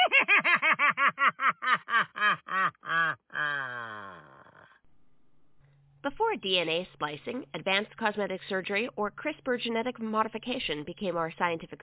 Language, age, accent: English, 40-59, American